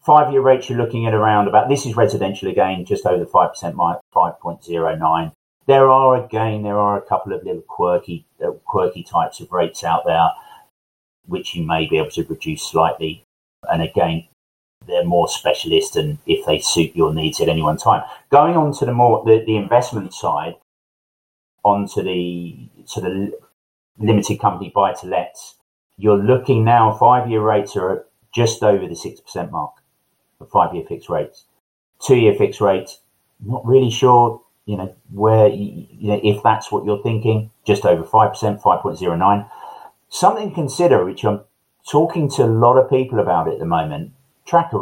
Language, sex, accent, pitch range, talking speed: English, male, British, 105-140 Hz, 170 wpm